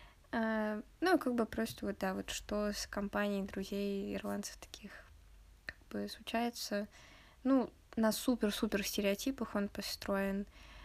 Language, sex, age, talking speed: Russian, female, 20-39, 120 wpm